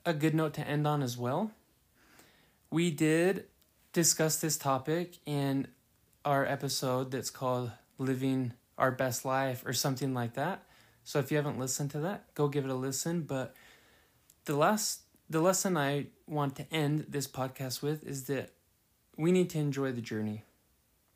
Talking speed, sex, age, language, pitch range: 165 wpm, male, 20-39, English, 125-150 Hz